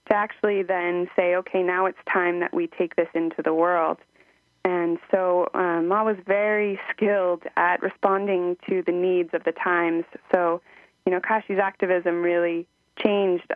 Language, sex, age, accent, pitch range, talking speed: English, female, 20-39, American, 170-195 Hz, 165 wpm